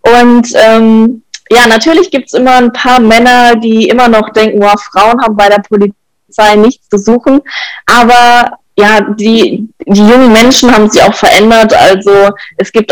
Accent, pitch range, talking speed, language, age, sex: German, 205-245 Hz, 165 wpm, German, 20-39, female